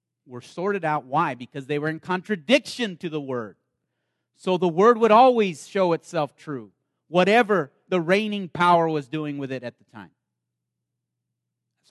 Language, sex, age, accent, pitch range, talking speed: English, male, 30-49, American, 125-195 Hz, 160 wpm